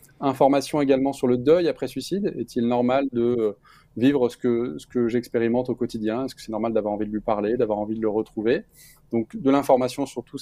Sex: male